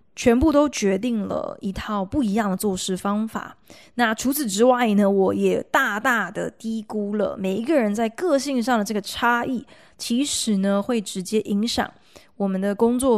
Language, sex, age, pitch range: Chinese, female, 20-39, 200-255 Hz